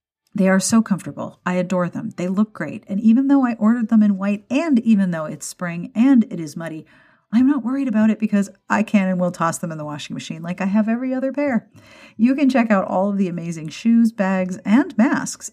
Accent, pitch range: American, 185-240 Hz